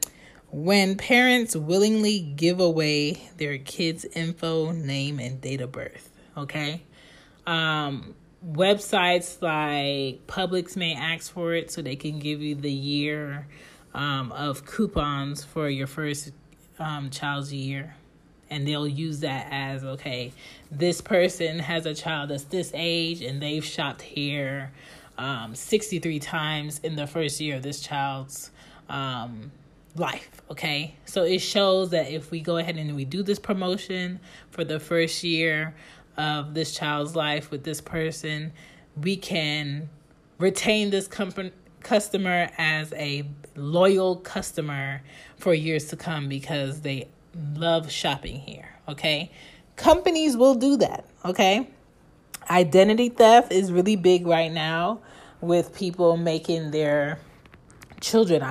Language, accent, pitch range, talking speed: English, American, 145-180 Hz, 135 wpm